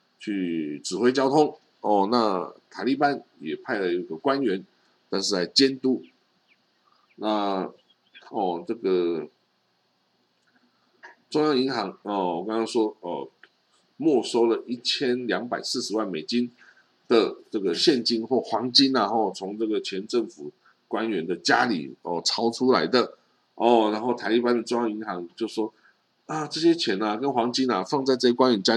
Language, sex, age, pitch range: Chinese, male, 50-69, 100-130 Hz